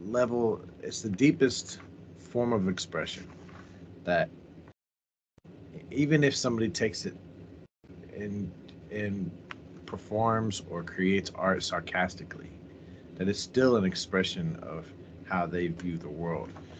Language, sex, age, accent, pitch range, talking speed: English, male, 30-49, American, 85-100 Hz, 110 wpm